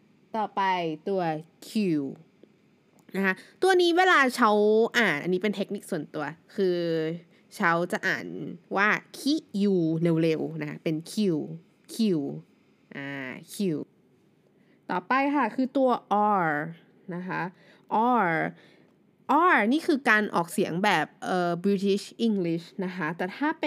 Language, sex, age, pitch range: Thai, female, 20-39, 170-215 Hz